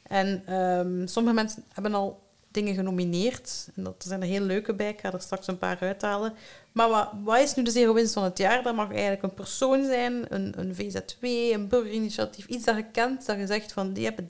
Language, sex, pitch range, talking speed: Dutch, female, 190-225 Hz, 220 wpm